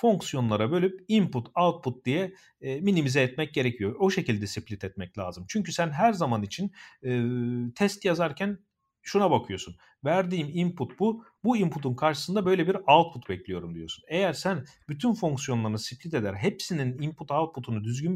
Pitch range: 120-175 Hz